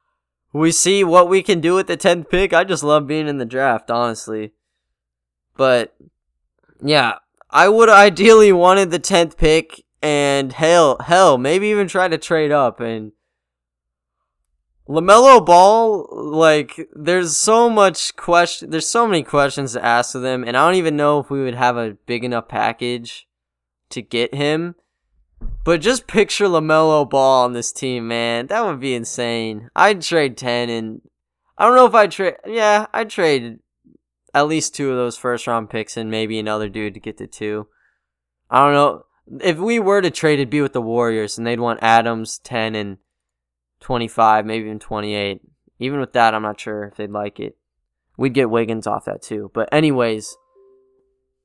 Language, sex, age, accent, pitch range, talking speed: English, male, 10-29, American, 110-170 Hz, 175 wpm